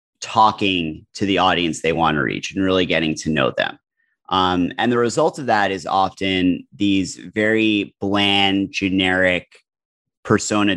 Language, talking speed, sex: English, 150 wpm, male